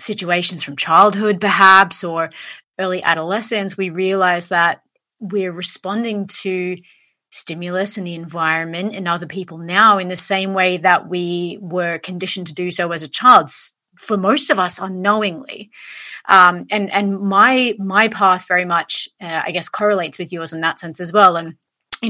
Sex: female